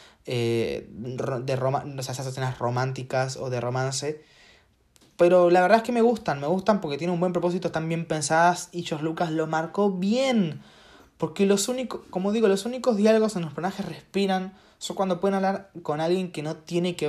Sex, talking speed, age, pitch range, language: male, 195 wpm, 20-39, 130-180 Hz, Spanish